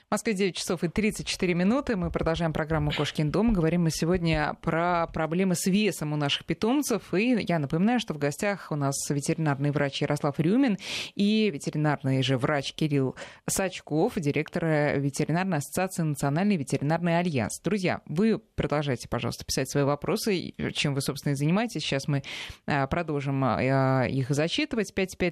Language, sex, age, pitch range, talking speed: Russian, female, 20-39, 145-195 Hz, 150 wpm